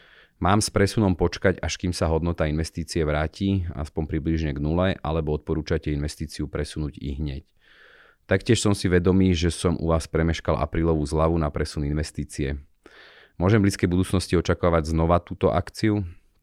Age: 30-49